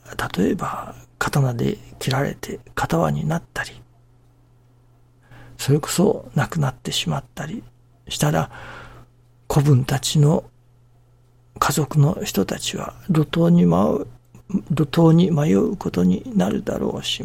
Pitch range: 120-145 Hz